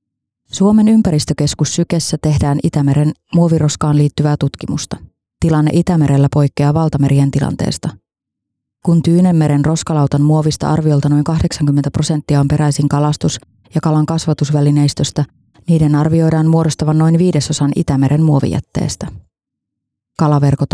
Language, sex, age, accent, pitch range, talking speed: Finnish, female, 20-39, native, 145-165 Hz, 100 wpm